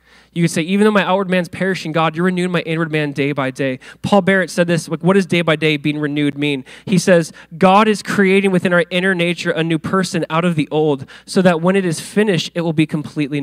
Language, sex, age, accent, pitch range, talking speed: English, male, 20-39, American, 160-210 Hz, 250 wpm